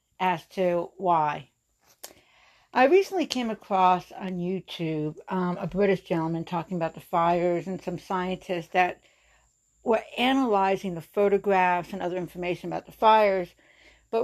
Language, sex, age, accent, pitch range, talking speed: English, female, 60-79, American, 175-205 Hz, 135 wpm